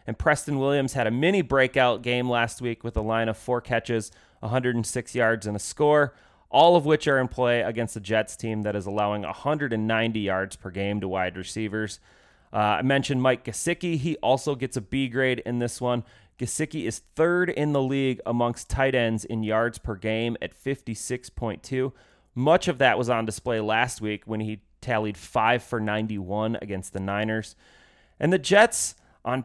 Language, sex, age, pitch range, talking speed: English, male, 30-49, 110-150 Hz, 185 wpm